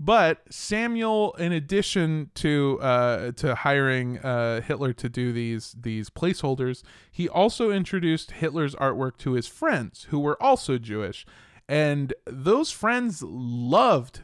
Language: English